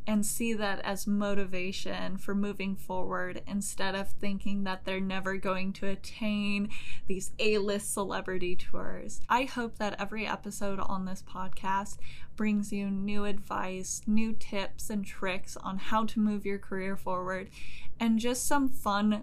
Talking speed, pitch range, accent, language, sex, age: 150 wpm, 185-215 Hz, American, English, female, 10-29